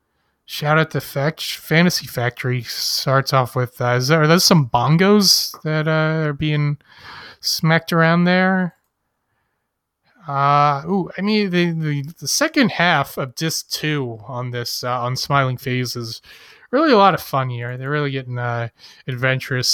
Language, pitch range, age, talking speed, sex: English, 140-220 Hz, 20-39, 160 wpm, male